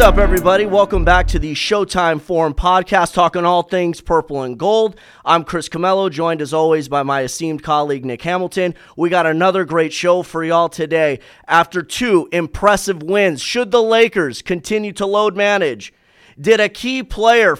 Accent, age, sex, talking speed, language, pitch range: American, 30-49, male, 175 wpm, English, 160-190 Hz